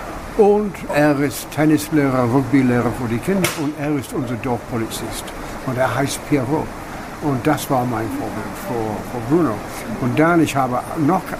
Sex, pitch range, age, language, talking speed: male, 120-150 Hz, 60-79, German, 160 wpm